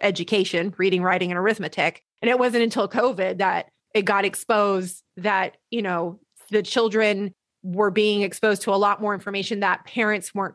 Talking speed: 170 wpm